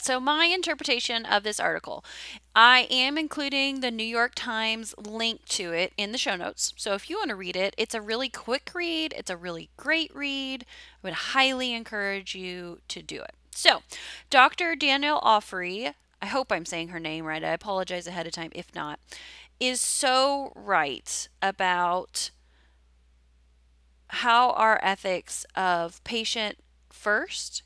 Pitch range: 175-240 Hz